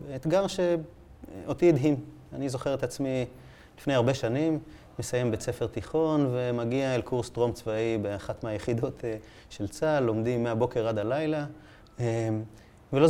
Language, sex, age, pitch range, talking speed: Hebrew, male, 30-49, 110-145 Hz, 130 wpm